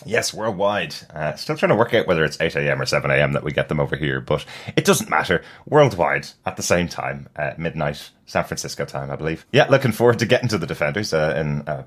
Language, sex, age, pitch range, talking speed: English, male, 20-39, 75-105 Hz, 235 wpm